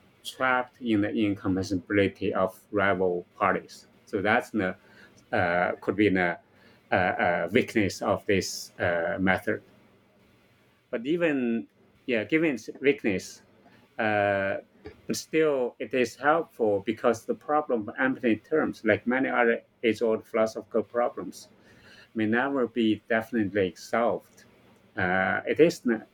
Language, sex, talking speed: English, male, 125 wpm